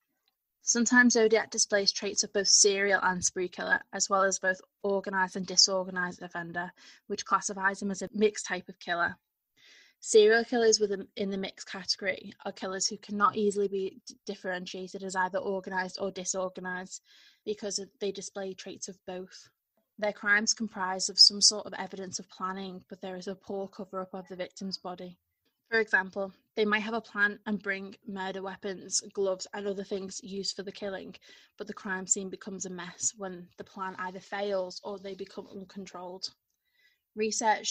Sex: female